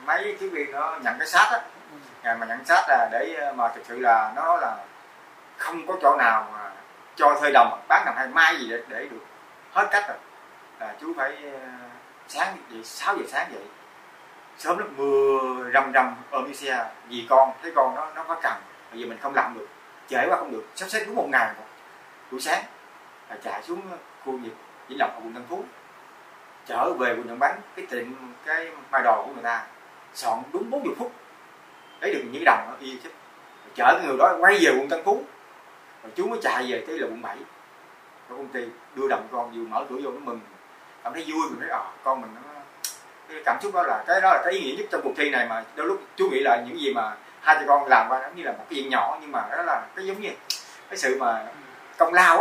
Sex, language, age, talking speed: male, Vietnamese, 20-39, 230 wpm